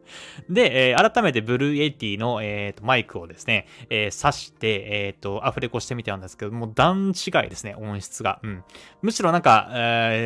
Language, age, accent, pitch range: Japanese, 20-39, native, 110-175 Hz